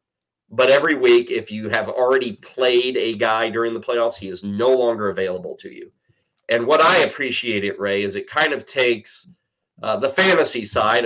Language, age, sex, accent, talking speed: English, 30-49, male, American, 190 wpm